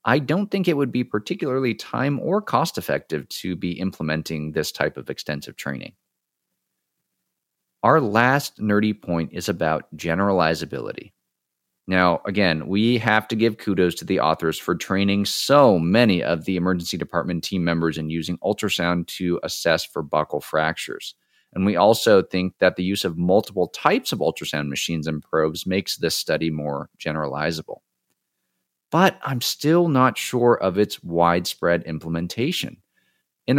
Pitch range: 80-110 Hz